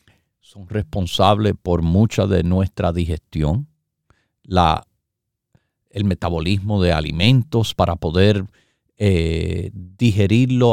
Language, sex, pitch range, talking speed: Spanish, male, 100-150 Hz, 90 wpm